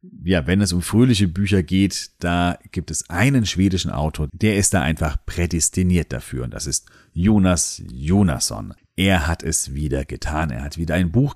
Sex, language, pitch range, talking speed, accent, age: male, German, 75-100 Hz, 180 wpm, German, 40-59